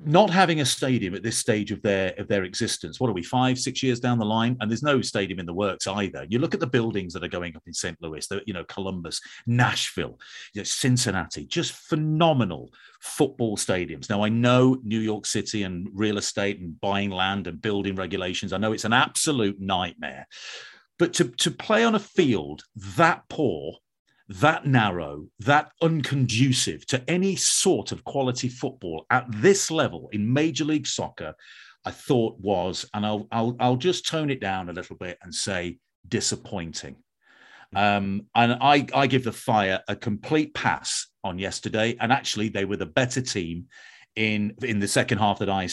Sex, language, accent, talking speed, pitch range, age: male, English, British, 185 wpm, 100-130 Hz, 40-59